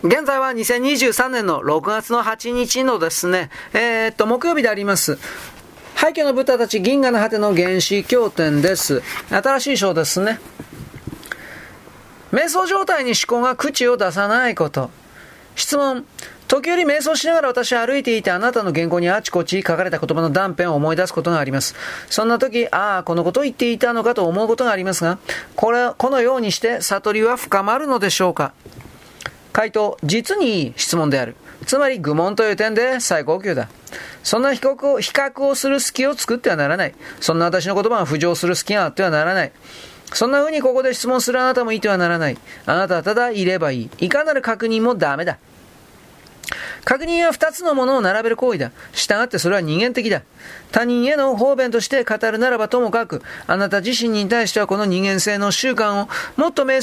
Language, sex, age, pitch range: Japanese, male, 40-59, 185-255 Hz